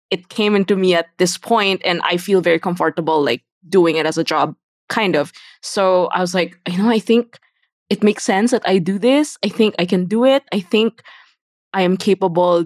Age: 20-39